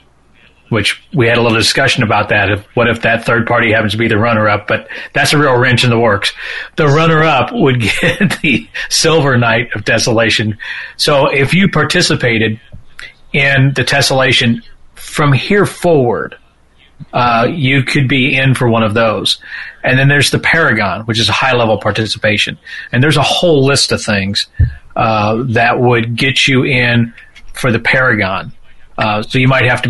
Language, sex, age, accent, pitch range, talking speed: English, male, 40-59, American, 110-130 Hz, 175 wpm